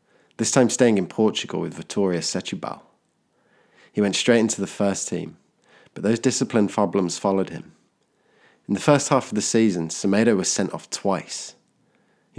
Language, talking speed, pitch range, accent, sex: English, 165 wpm, 90-115 Hz, British, male